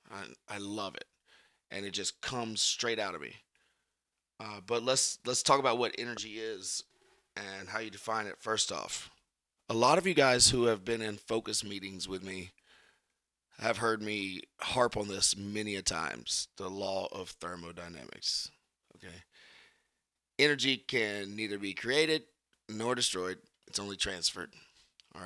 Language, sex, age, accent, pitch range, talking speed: English, male, 30-49, American, 95-115 Hz, 155 wpm